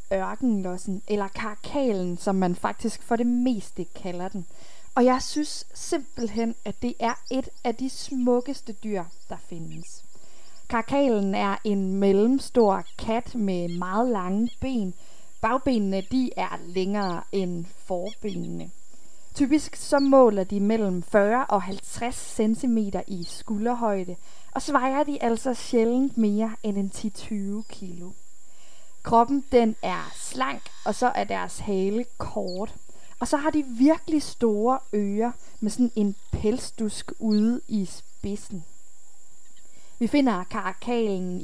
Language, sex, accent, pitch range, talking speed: Danish, female, native, 195-245 Hz, 125 wpm